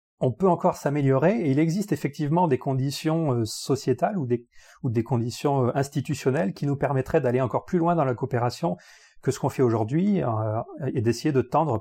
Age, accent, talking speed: 40-59, French, 180 wpm